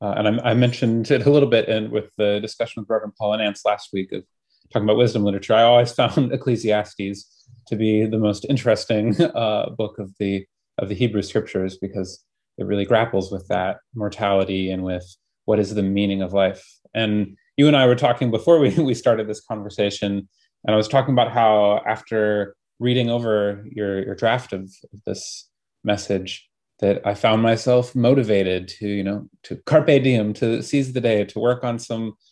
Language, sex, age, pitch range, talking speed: English, male, 30-49, 100-120 Hz, 190 wpm